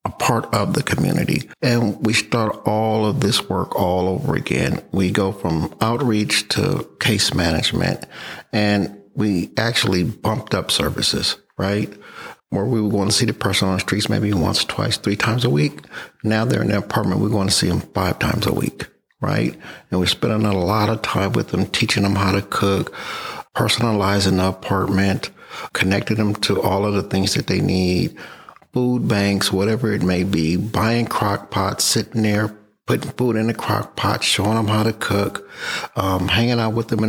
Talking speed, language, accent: 190 wpm, English, American